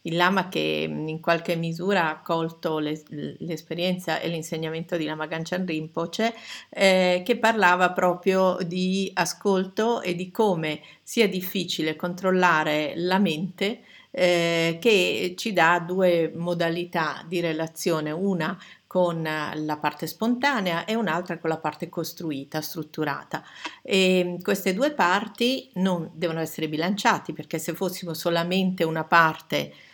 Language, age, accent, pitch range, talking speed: Italian, 50-69, native, 160-190 Hz, 125 wpm